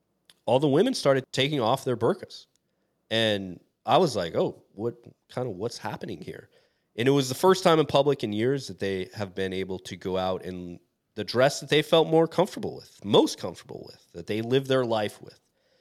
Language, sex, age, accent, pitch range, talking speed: English, male, 30-49, American, 95-115 Hz, 210 wpm